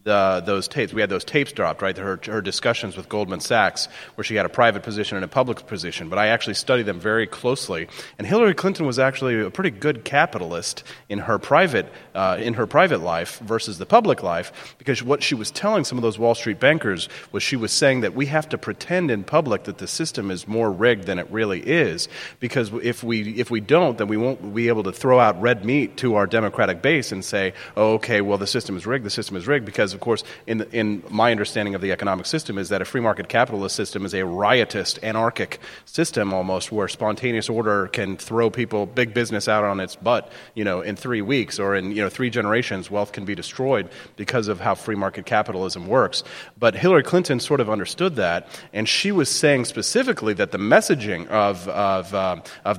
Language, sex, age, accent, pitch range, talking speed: English, male, 30-49, American, 100-125 Hz, 220 wpm